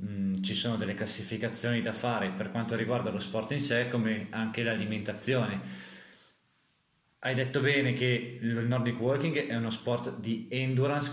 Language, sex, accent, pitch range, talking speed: Italian, male, native, 115-140 Hz, 155 wpm